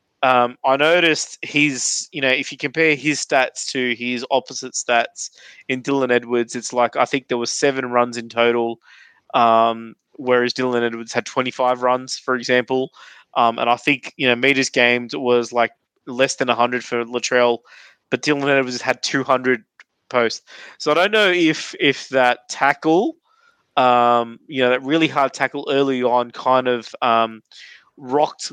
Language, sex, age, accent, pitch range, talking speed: English, male, 20-39, Australian, 120-140 Hz, 165 wpm